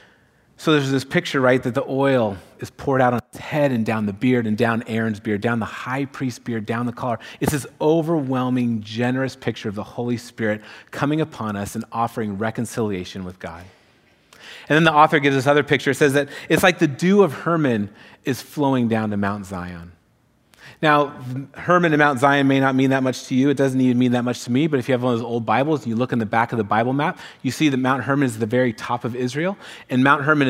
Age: 30-49